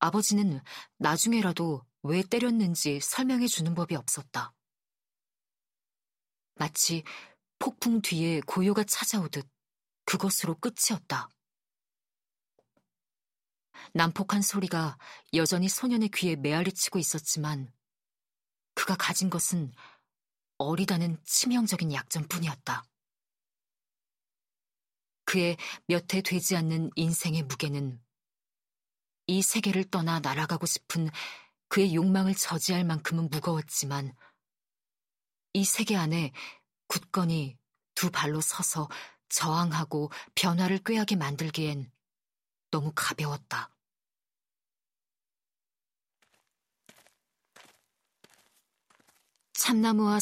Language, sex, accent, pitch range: Korean, female, native, 155-195 Hz